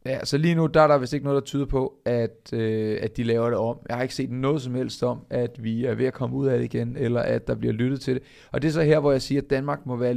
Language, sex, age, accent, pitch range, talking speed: Danish, male, 30-49, native, 120-140 Hz, 335 wpm